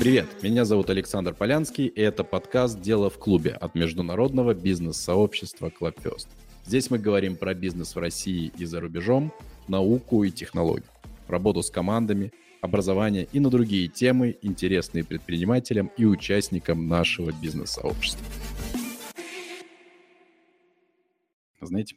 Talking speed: 115 wpm